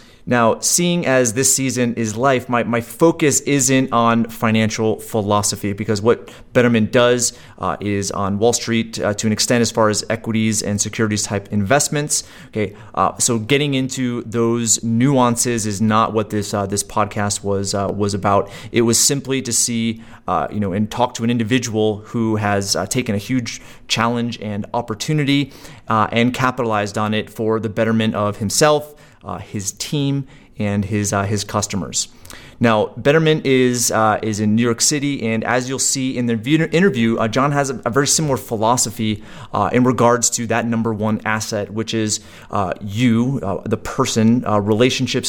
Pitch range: 105-125 Hz